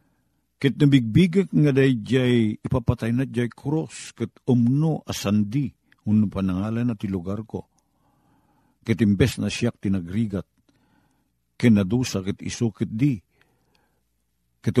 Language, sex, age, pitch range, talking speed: Filipino, male, 50-69, 90-120 Hz, 95 wpm